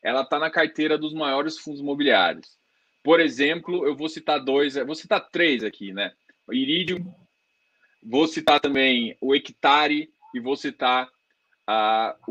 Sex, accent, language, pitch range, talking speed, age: male, Brazilian, Portuguese, 150-210 Hz, 140 wpm, 20-39